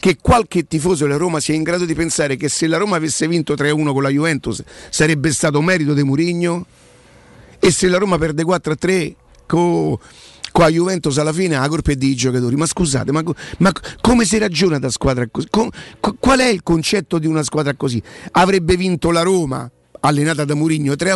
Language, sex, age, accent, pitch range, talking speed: Italian, male, 50-69, native, 150-195 Hz, 195 wpm